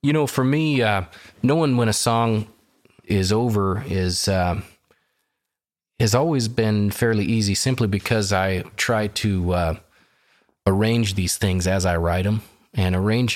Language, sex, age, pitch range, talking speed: English, male, 30-49, 90-110 Hz, 150 wpm